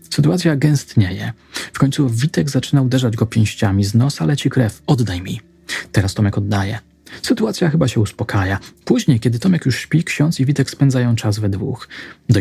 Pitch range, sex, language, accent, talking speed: 110-145 Hz, male, Polish, native, 170 wpm